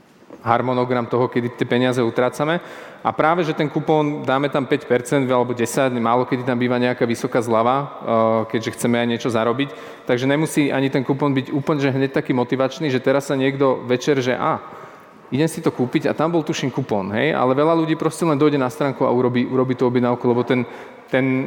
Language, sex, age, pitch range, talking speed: Slovak, male, 30-49, 125-145 Hz, 205 wpm